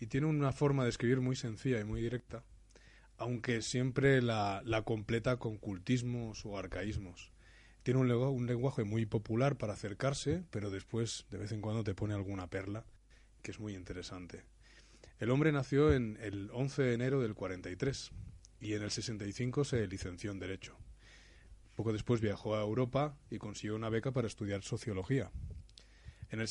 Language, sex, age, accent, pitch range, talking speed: Spanish, male, 20-39, Spanish, 100-120 Hz, 165 wpm